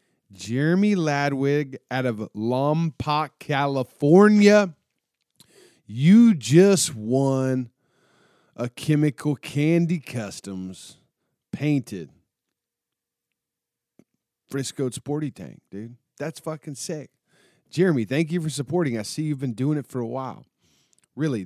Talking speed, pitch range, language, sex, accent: 100 wpm, 110-150 Hz, English, male, American